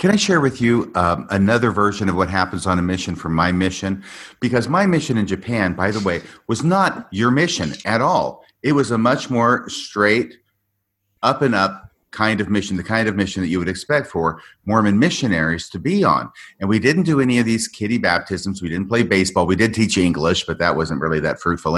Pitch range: 90-120 Hz